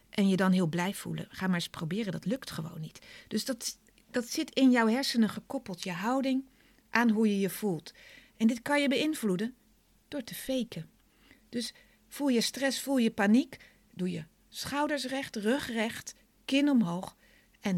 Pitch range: 190-250 Hz